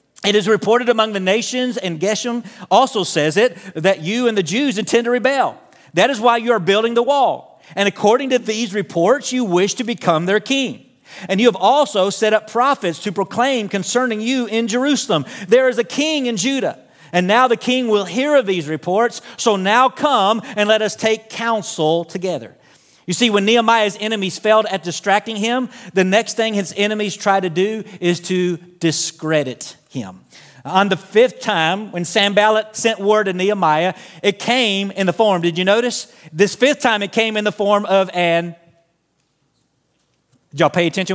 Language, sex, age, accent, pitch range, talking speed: English, male, 40-59, American, 185-235 Hz, 185 wpm